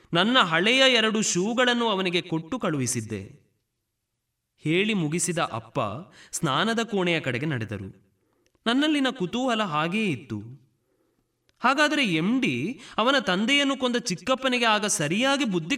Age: 20-39